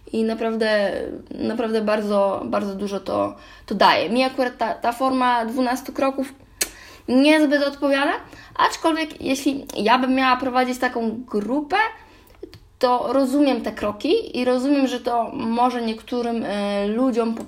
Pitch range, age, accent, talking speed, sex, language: 210-260 Hz, 20-39, native, 135 wpm, female, Polish